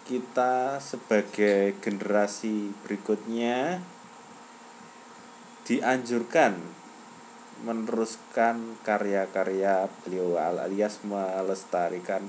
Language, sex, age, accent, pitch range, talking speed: Indonesian, male, 30-49, native, 100-165 Hz, 50 wpm